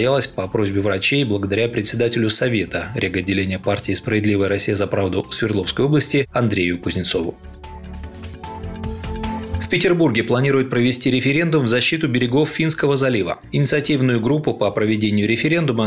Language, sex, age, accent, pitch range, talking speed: Russian, male, 30-49, native, 110-135 Hz, 120 wpm